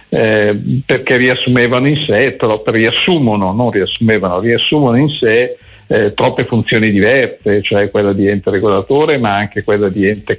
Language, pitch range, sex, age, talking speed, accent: Italian, 105-130 Hz, male, 50-69, 145 wpm, native